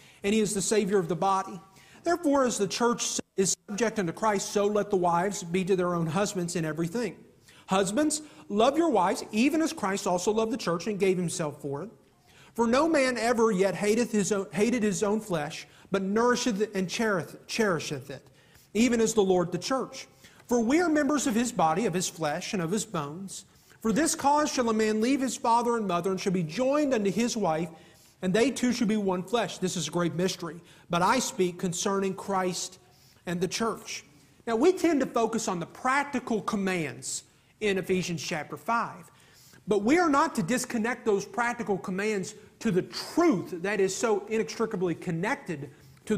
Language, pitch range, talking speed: English, 180-235 Hz, 195 wpm